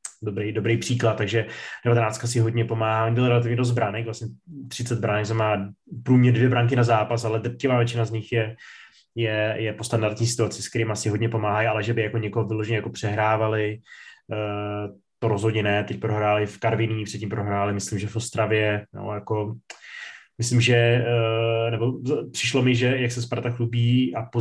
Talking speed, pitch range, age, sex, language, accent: 175 wpm, 110-120 Hz, 20-39, male, Czech, native